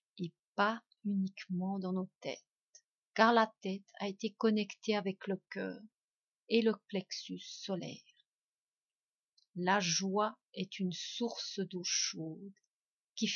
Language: French